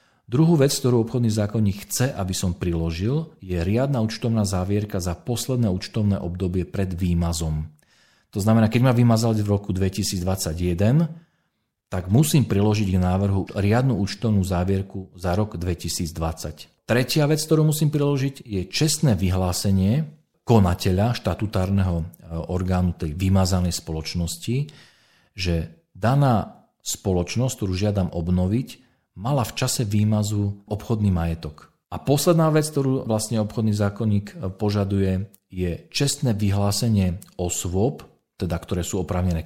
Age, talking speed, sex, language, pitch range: 40-59, 120 wpm, male, Slovak, 90-115 Hz